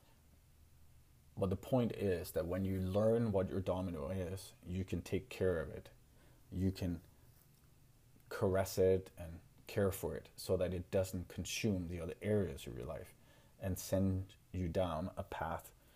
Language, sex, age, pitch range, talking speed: English, male, 30-49, 85-100 Hz, 160 wpm